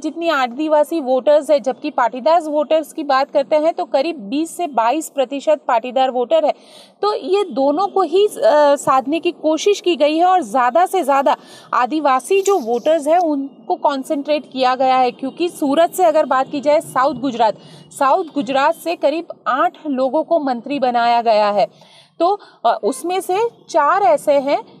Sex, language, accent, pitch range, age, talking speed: female, Hindi, native, 265-330 Hz, 30-49, 170 wpm